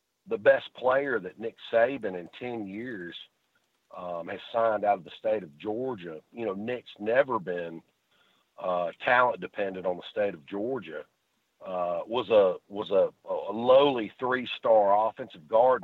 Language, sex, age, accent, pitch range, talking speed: English, male, 50-69, American, 90-120 Hz, 160 wpm